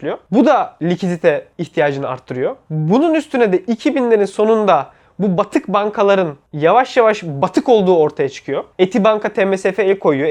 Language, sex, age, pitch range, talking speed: Turkish, male, 20-39, 170-220 Hz, 135 wpm